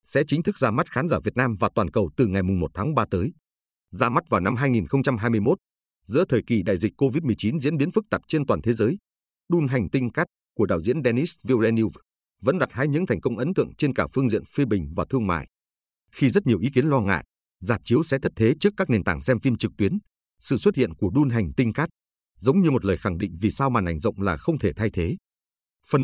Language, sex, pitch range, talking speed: Vietnamese, male, 95-140 Hz, 250 wpm